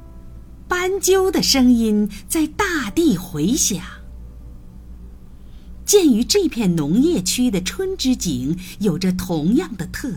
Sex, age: female, 50-69